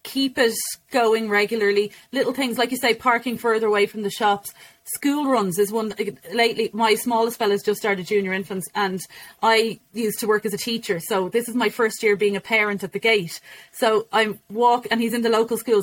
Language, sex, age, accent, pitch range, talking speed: English, female, 30-49, Irish, 195-230 Hz, 215 wpm